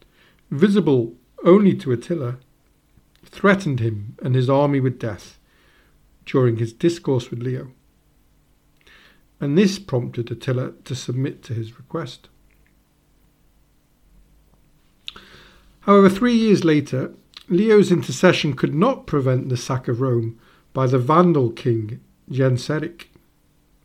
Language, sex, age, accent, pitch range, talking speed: English, male, 50-69, British, 130-180 Hz, 110 wpm